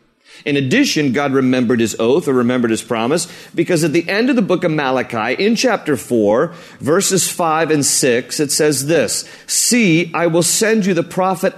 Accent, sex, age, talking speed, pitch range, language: American, male, 40-59, 185 wpm, 150-195 Hz, English